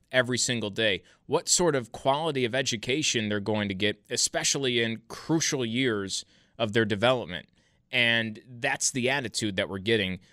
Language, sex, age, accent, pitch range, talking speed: English, male, 30-49, American, 110-140 Hz, 155 wpm